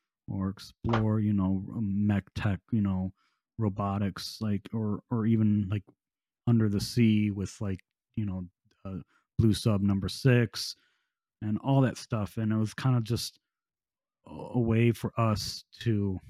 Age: 30-49